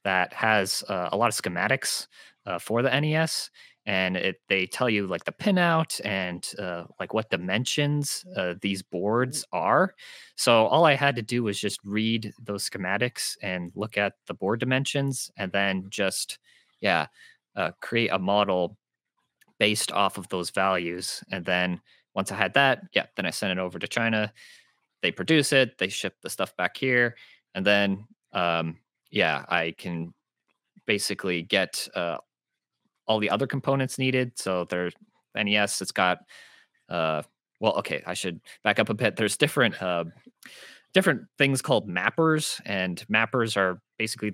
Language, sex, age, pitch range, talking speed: English, male, 20-39, 95-125 Hz, 160 wpm